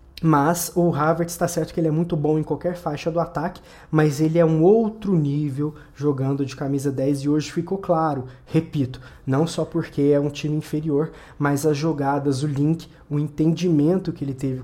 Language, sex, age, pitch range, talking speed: Portuguese, male, 20-39, 145-170 Hz, 195 wpm